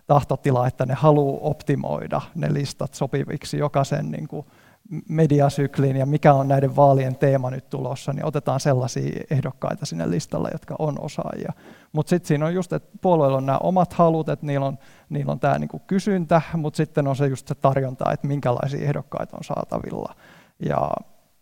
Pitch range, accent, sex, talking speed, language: 135-155 Hz, native, male, 170 wpm, Finnish